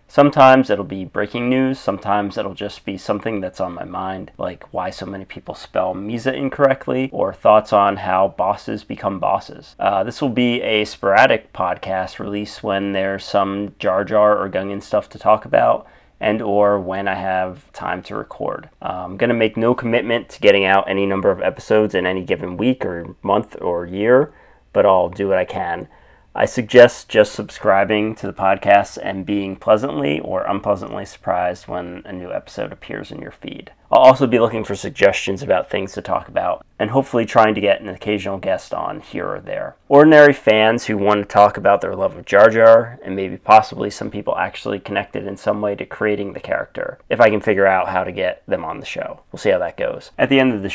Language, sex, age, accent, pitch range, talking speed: English, male, 30-49, American, 95-115 Hz, 205 wpm